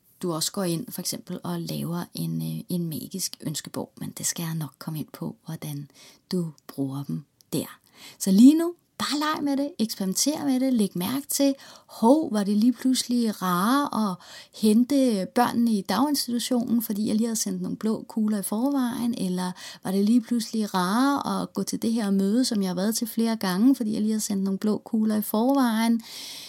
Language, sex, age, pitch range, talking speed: Danish, female, 30-49, 195-245 Hz, 200 wpm